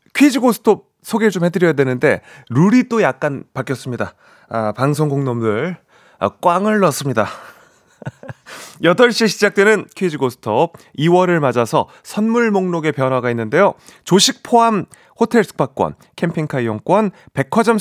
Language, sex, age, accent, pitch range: Korean, male, 30-49, native, 135-200 Hz